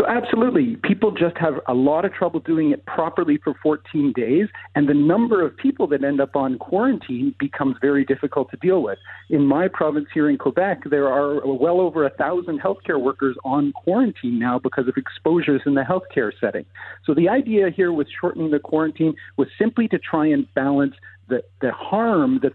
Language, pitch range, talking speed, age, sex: English, 135-200 Hz, 195 wpm, 50-69, male